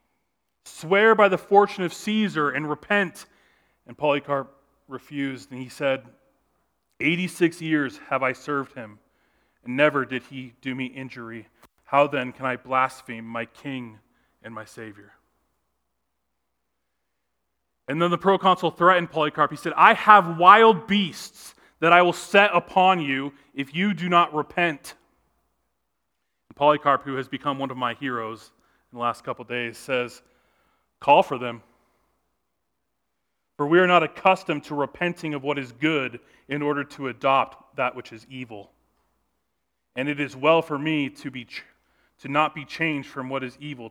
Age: 30-49